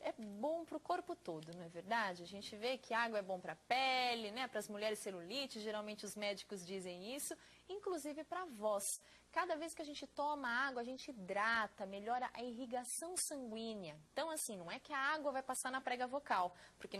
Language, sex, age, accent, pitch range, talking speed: Portuguese, female, 20-39, Brazilian, 210-295 Hz, 215 wpm